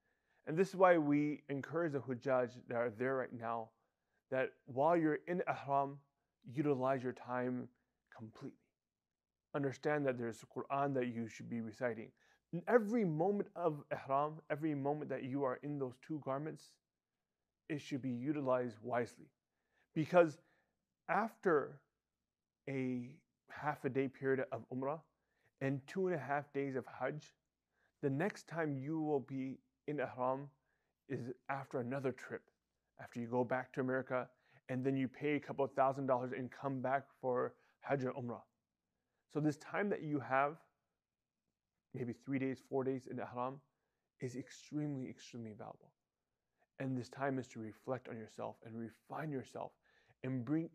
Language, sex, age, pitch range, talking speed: English, male, 30-49, 125-145 Hz, 155 wpm